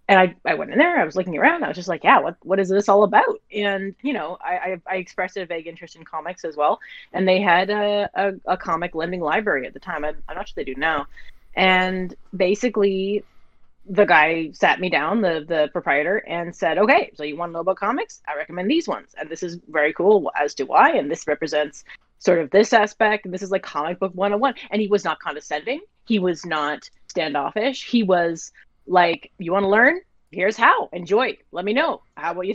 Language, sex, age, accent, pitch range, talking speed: English, female, 30-49, American, 160-200 Hz, 230 wpm